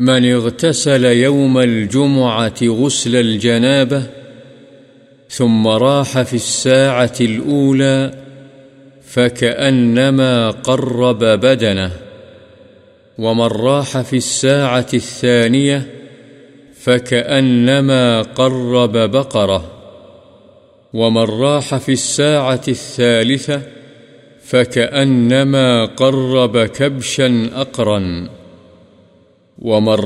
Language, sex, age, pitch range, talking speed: Urdu, male, 50-69, 115-135 Hz, 65 wpm